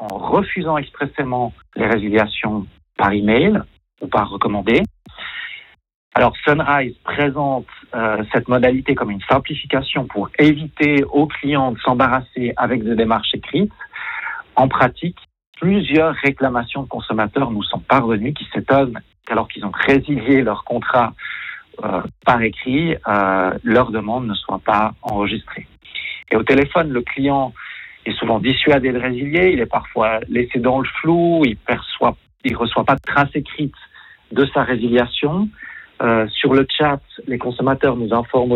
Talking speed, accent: 145 wpm, French